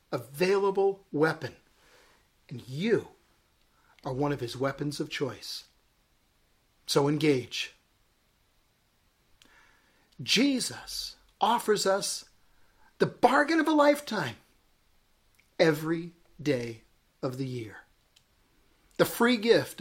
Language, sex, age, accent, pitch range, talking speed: English, male, 50-69, American, 150-230 Hz, 90 wpm